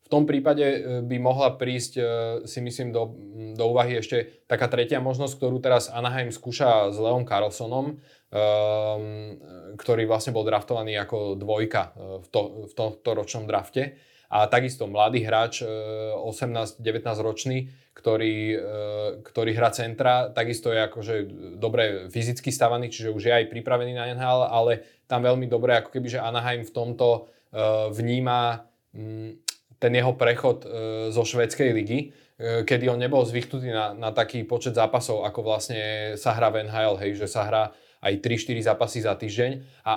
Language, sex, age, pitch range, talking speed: Slovak, male, 20-39, 110-125 Hz, 155 wpm